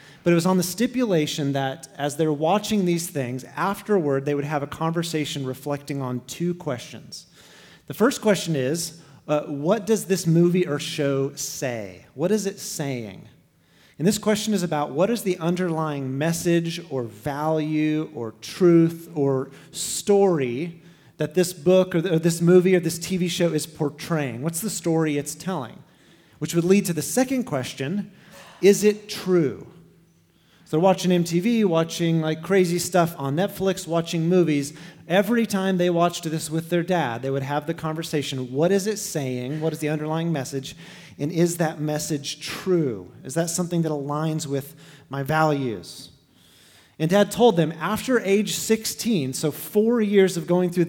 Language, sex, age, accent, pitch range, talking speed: English, male, 30-49, American, 145-180 Hz, 165 wpm